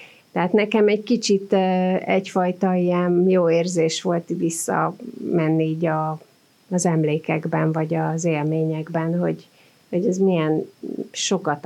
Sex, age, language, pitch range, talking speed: female, 30-49, Hungarian, 160-180 Hz, 110 wpm